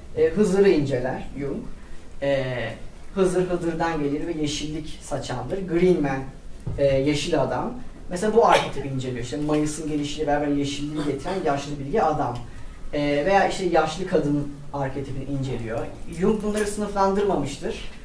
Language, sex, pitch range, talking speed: Turkish, female, 140-185 Hz, 125 wpm